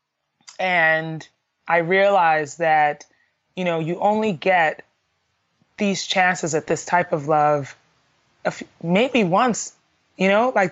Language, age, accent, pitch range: English, 20-39, American, 165-195 Hz